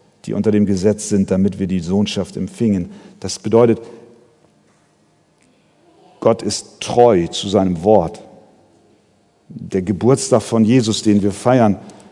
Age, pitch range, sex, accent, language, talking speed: 50-69, 105-125 Hz, male, German, German, 125 wpm